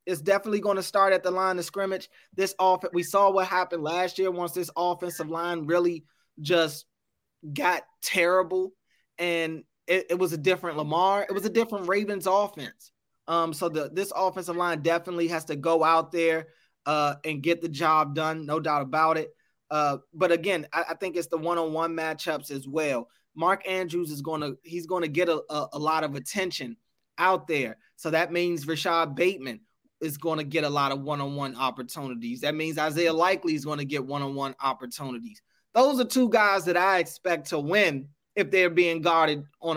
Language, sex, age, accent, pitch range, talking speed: English, male, 20-39, American, 155-185 Hz, 190 wpm